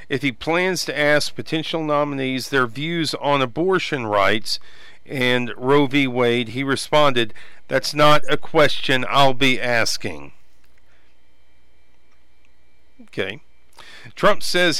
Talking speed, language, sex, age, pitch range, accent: 115 wpm, English, male, 50-69, 115-165 Hz, American